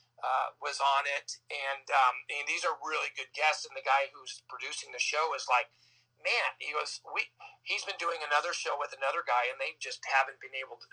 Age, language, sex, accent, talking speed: 40-59, English, male, American, 215 wpm